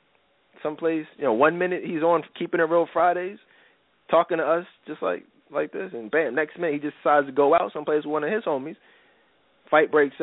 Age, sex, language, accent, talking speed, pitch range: 20-39, male, English, American, 210 wpm, 135-215 Hz